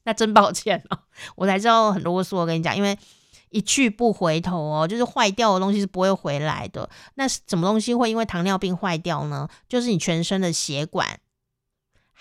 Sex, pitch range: female, 170-225 Hz